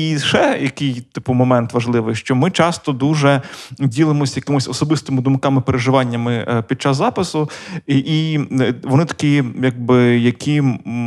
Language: Ukrainian